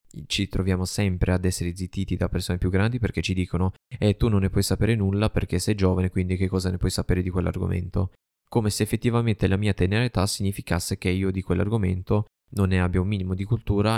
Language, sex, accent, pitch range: Italian, male, native, 95-110 Hz